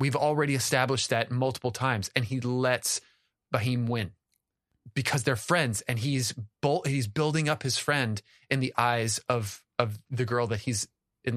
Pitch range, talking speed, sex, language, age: 115-145 Hz, 170 wpm, male, English, 30-49